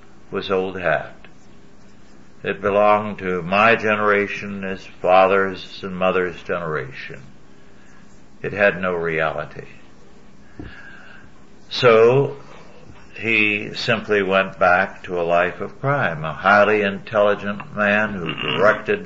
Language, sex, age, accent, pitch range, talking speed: English, male, 60-79, American, 95-110 Hz, 105 wpm